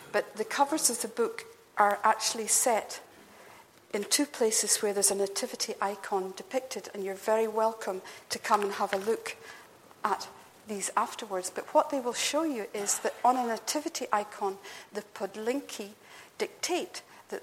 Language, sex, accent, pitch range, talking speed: English, female, British, 200-235 Hz, 160 wpm